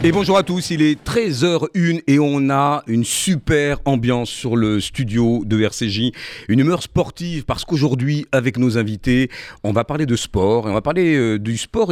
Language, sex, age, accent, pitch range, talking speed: French, male, 50-69, French, 100-140 Hz, 190 wpm